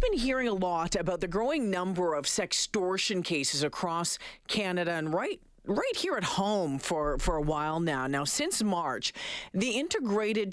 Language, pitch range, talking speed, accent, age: English, 180-245 Hz, 165 wpm, American, 40-59